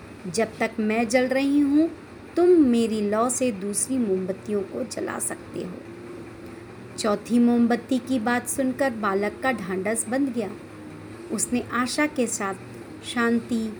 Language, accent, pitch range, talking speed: Hindi, native, 195-245 Hz, 135 wpm